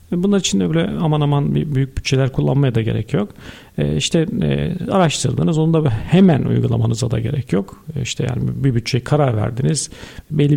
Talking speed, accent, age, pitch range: 155 wpm, native, 50-69, 125-155 Hz